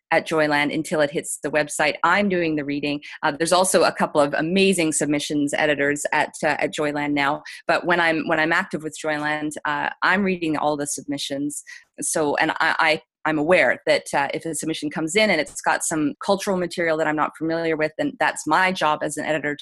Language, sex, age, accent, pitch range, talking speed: English, female, 30-49, American, 150-180 Hz, 215 wpm